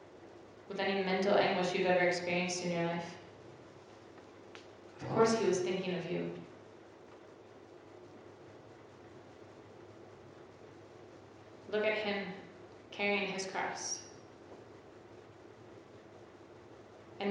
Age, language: 20-39, English